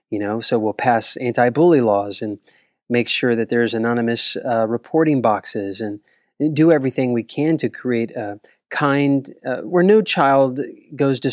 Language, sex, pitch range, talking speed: English, male, 110-135 Hz, 165 wpm